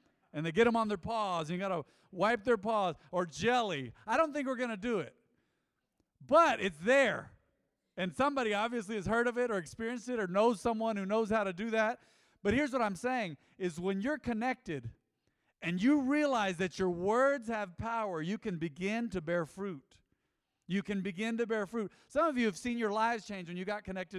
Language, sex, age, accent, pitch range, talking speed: English, male, 40-59, American, 175-230 Hz, 215 wpm